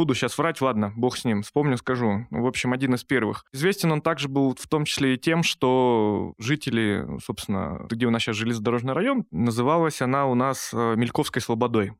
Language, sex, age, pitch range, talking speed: Russian, male, 20-39, 115-150 Hz, 190 wpm